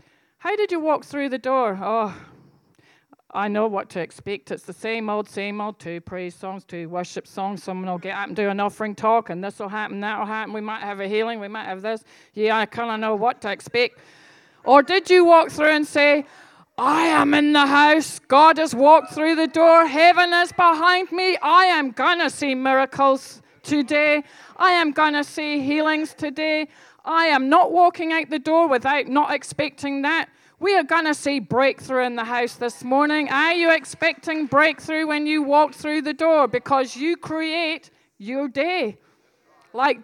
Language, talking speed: English, 200 wpm